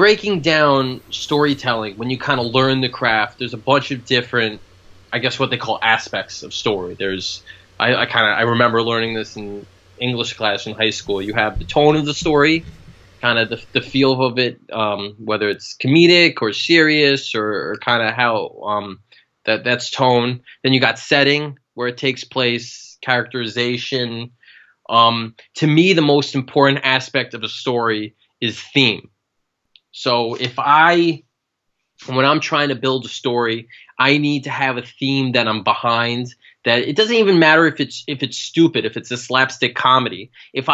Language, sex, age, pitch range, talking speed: English, male, 20-39, 110-135 Hz, 180 wpm